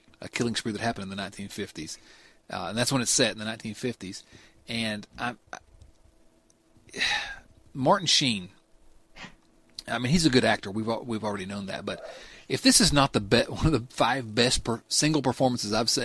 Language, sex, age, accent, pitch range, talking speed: English, male, 40-59, American, 105-140 Hz, 185 wpm